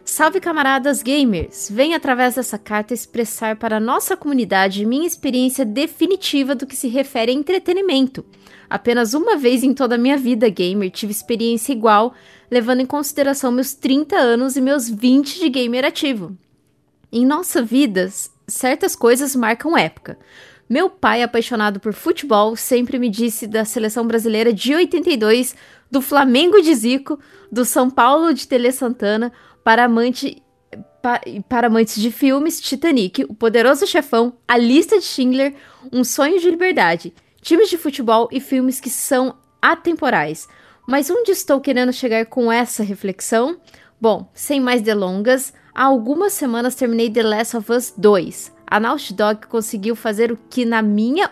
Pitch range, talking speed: 230-285 Hz, 150 wpm